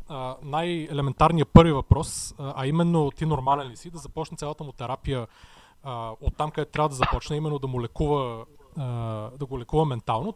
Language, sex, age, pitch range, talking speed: Bulgarian, male, 30-49, 145-180 Hz, 185 wpm